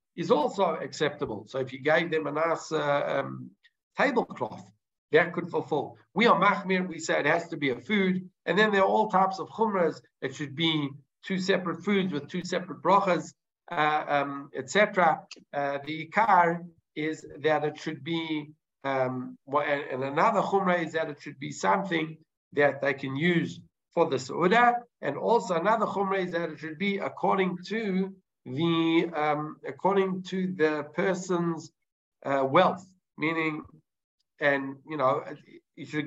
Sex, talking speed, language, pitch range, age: male, 160 wpm, English, 145-185 Hz, 60-79